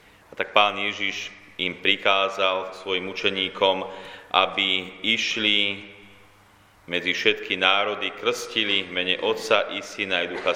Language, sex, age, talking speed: Slovak, male, 30-49, 115 wpm